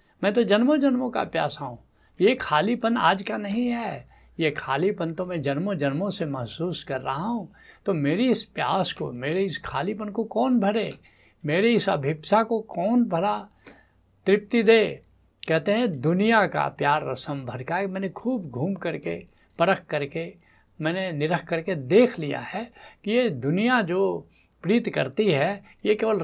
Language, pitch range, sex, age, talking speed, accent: Hindi, 140-200 Hz, male, 70-89, 160 wpm, native